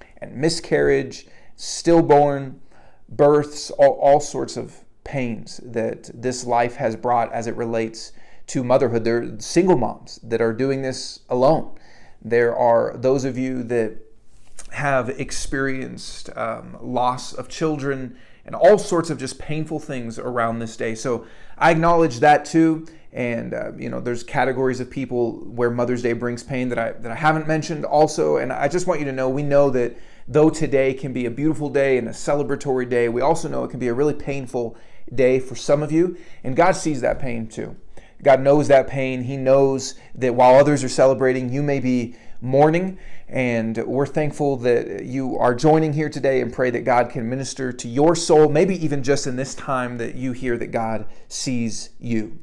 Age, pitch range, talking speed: 30-49, 120-150 Hz, 185 wpm